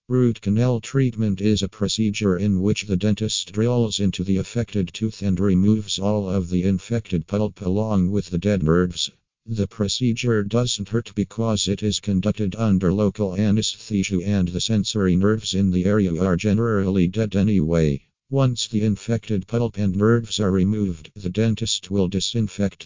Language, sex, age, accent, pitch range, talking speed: English, male, 50-69, American, 95-110 Hz, 160 wpm